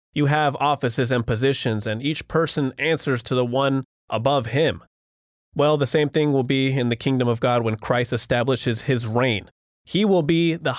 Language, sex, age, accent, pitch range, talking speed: English, male, 20-39, American, 120-160 Hz, 190 wpm